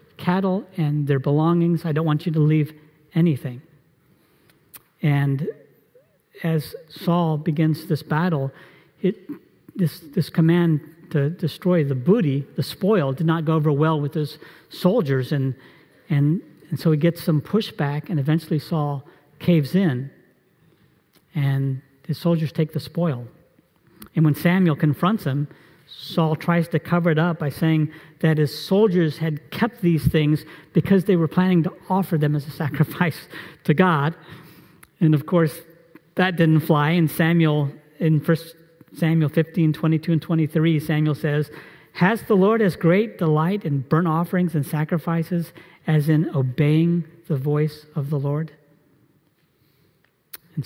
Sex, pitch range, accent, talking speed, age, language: male, 150-170 Hz, American, 145 wpm, 50-69, English